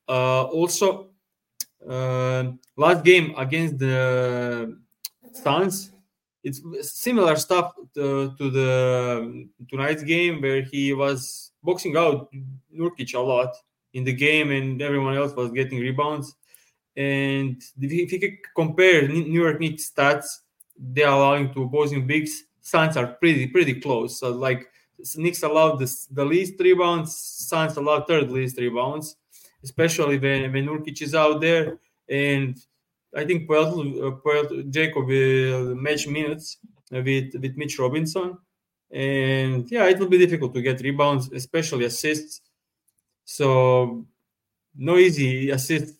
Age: 20-39